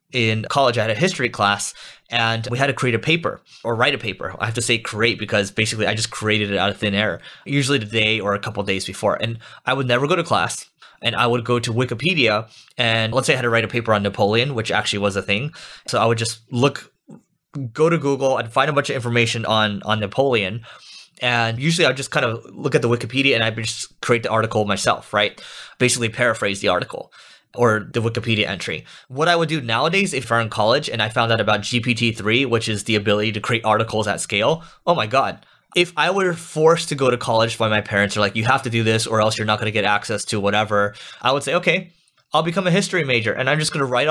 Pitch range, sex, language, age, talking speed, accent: 110-140 Hz, male, English, 20-39, 250 wpm, American